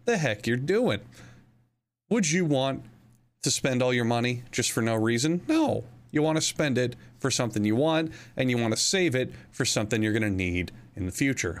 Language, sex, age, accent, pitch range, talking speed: English, male, 30-49, American, 110-140 Hz, 210 wpm